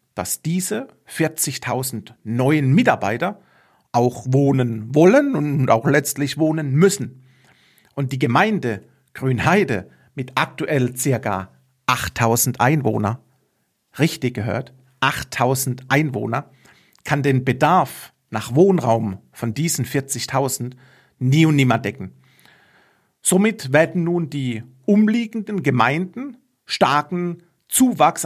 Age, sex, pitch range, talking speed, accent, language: 40-59, male, 125-165 Hz, 100 wpm, German, German